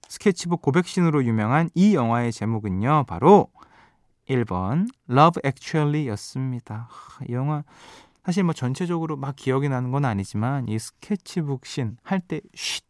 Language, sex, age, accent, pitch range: Korean, male, 20-39, native, 115-175 Hz